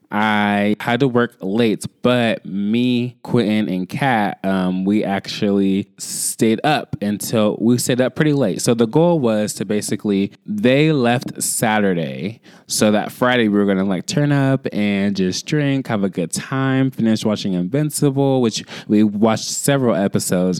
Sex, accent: male, American